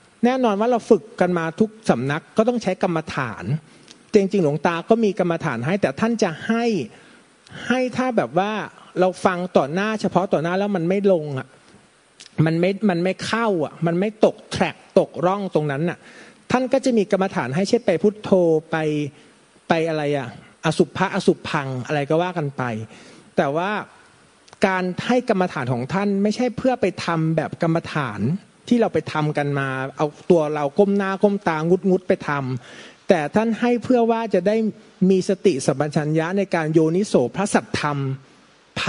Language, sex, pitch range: Thai, male, 155-205 Hz